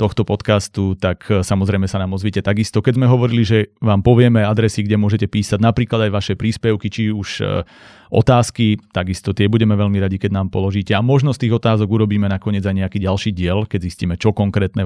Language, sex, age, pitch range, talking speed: Slovak, male, 30-49, 100-115 Hz, 200 wpm